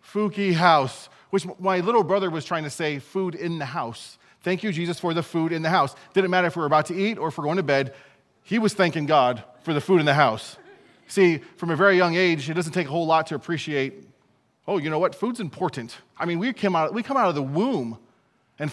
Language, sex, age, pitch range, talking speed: English, male, 30-49, 135-180 Hz, 255 wpm